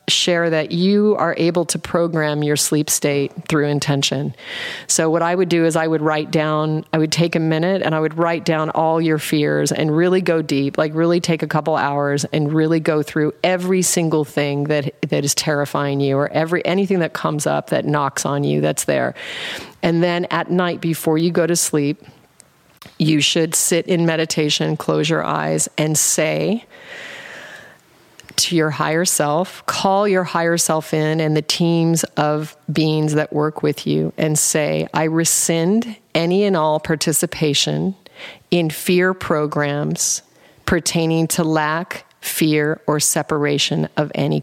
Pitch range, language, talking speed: 150-170 Hz, English, 170 wpm